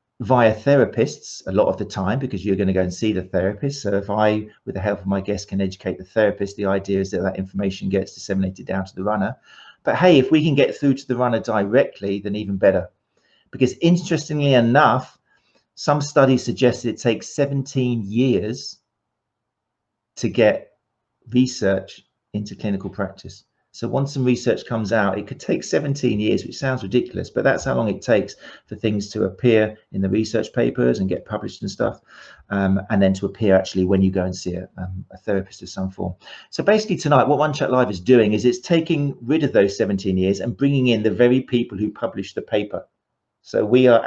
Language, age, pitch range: English, 40-59, 100-130 Hz